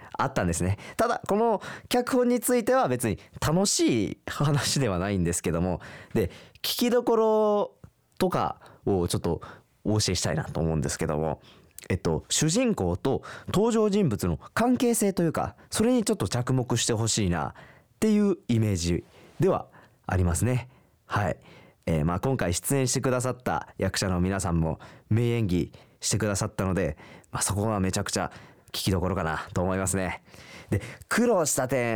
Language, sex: Japanese, male